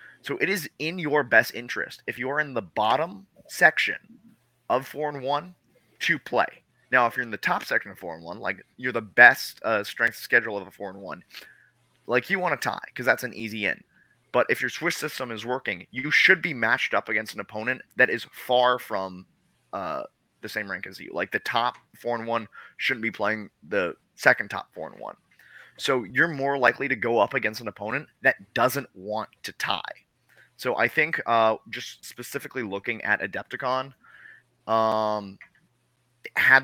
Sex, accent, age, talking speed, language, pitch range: male, American, 20-39, 195 wpm, English, 110-130 Hz